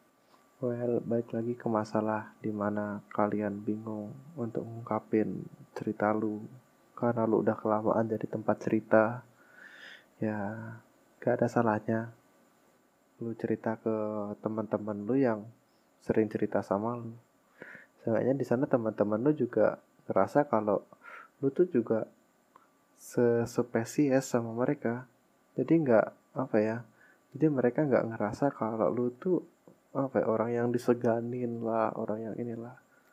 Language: Indonesian